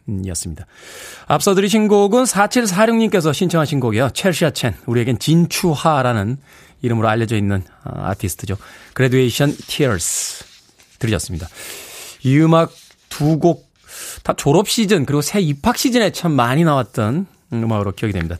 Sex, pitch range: male, 115-190 Hz